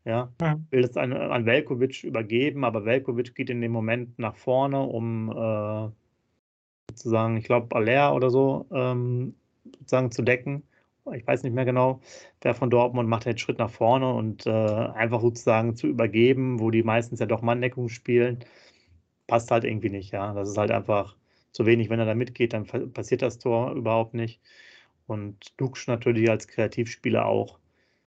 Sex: male